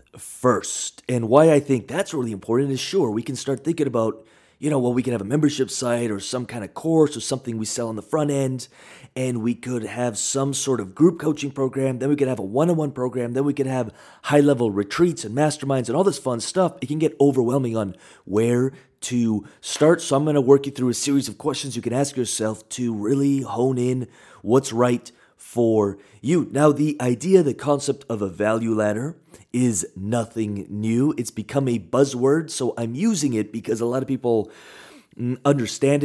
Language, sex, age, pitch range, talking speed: English, male, 30-49, 115-140 Hz, 210 wpm